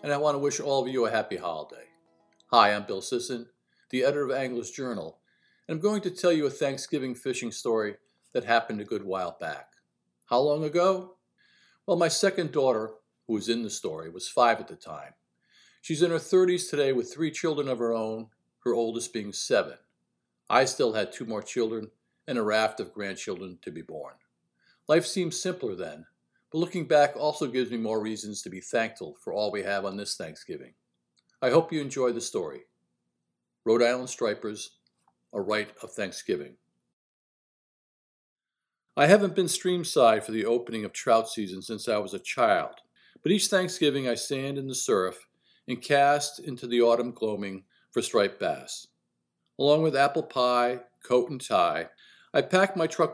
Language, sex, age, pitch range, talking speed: English, male, 50-69, 110-155 Hz, 180 wpm